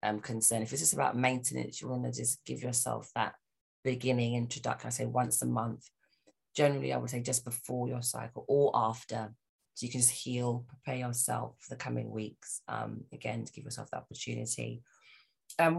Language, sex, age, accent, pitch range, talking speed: English, female, 20-39, British, 125-155 Hz, 190 wpm